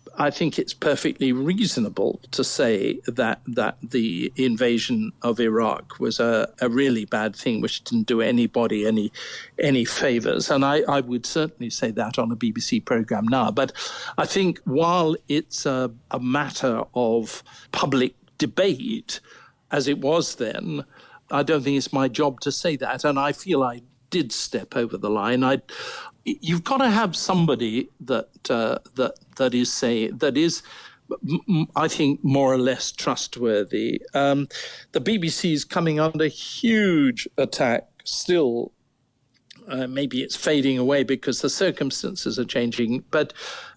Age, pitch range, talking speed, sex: 60-79, 125-160 Hz, 155 wpm, male